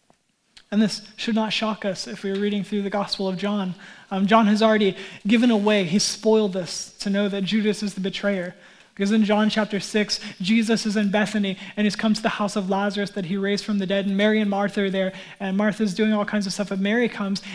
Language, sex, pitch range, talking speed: English, male, 200-225 Hz, 240 wpm